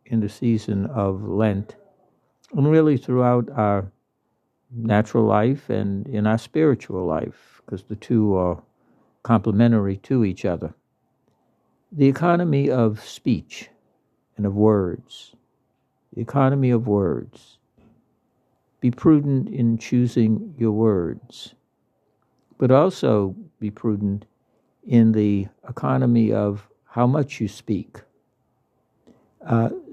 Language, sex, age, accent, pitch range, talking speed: English, male, 60-79, American, 110-130 Hz, 110 wpm